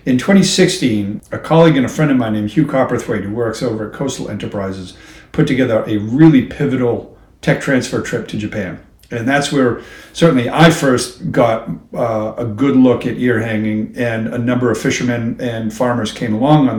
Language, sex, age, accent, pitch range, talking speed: English, male, 50-69, American, 115-145 Hz, 185 wpm